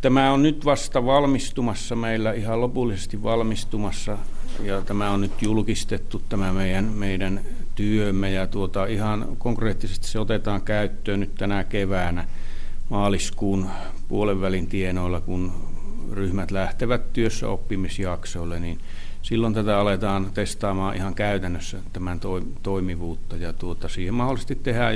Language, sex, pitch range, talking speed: Finnish, male, 95-110 Hz, 125 wpm